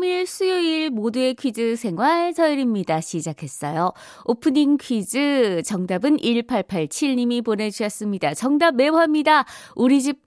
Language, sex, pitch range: Korean, female, 200-300 Hz